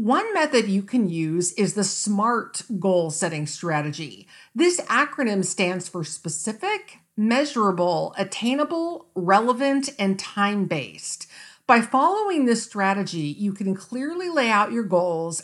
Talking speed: 125 wpm